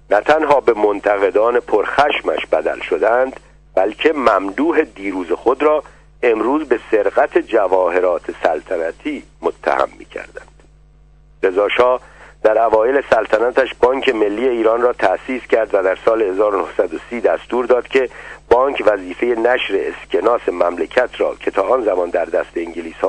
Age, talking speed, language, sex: 50-69, 125 wpm, Persian, male